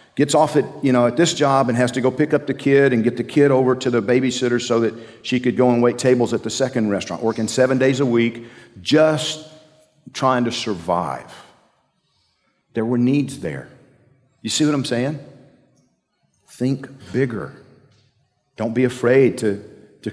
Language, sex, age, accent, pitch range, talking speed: English, male, 50-69, American, 120-140 Hz, 180 wpm